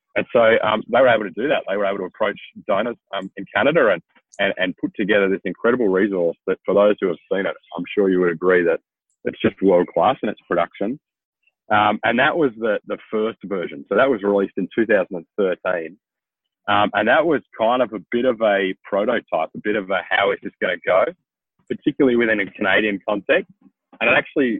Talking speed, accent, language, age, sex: 215 wpm, Australian, English, 30-49, male